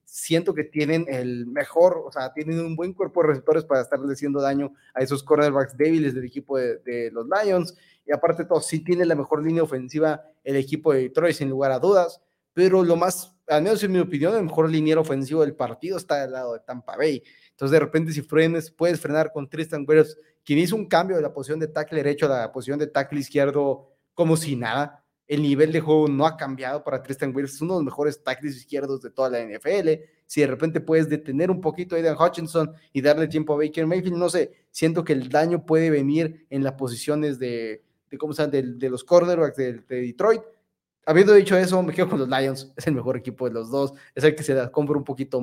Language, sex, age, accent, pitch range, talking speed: Spanish, male, 30-49, Mexican, 140-165 Hz, 235 wpm